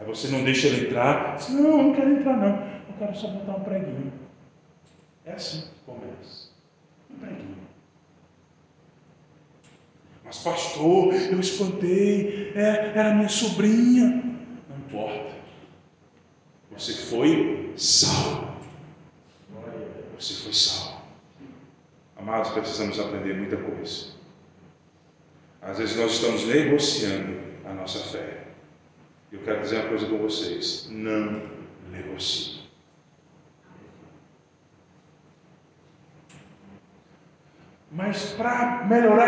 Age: 40-59